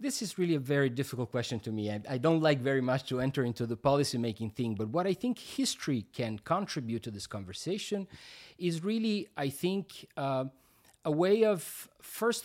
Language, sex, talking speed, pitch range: English, male, 200 wpm, 120-175 Hz